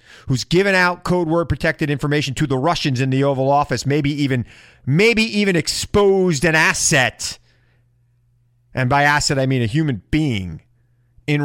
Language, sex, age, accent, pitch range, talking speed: English, male, 30-49, American, 120-145 Hz, 155 wpm